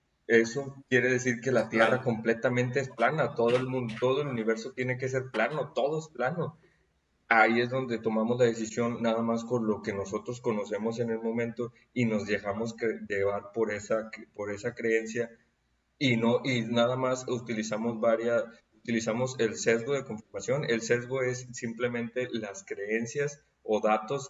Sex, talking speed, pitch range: male, 170 wpm, 110-125 Hz